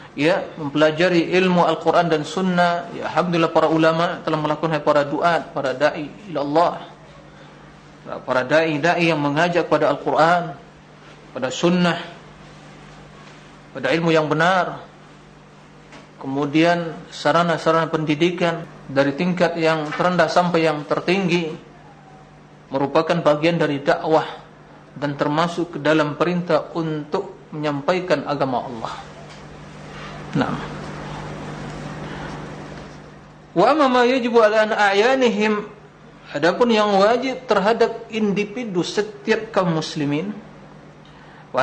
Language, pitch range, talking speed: Indonesian, 150-180 Hz, 100 wpm